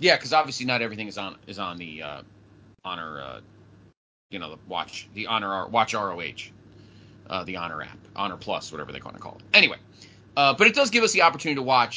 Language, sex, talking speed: English, male, 220 wpm